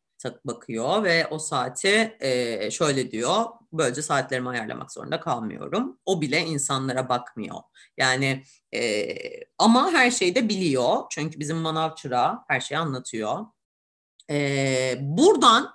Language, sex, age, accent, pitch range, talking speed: Turkish, female, 30-49, native, 135-200 Hz, 120 wpm